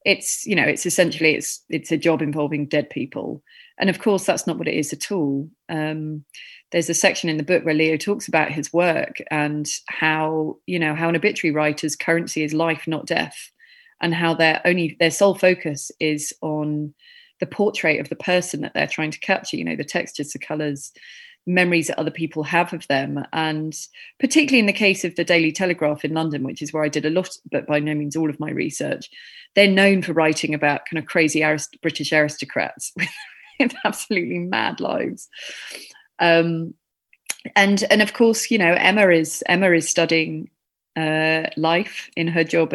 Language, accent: English, British